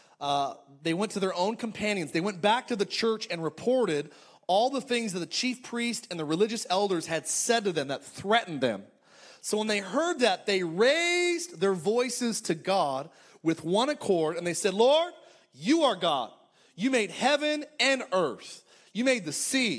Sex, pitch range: male, 175-235 Hz